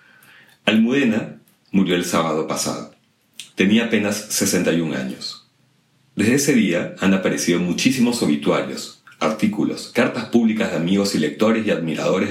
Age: 40-59